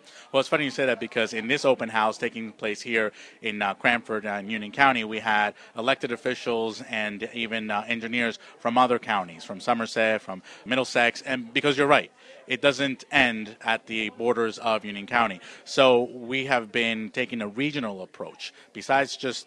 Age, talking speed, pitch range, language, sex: 30-49, 180 wpm, 110-125 Hz, English, male